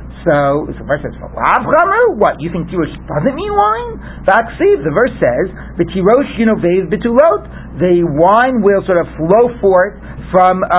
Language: English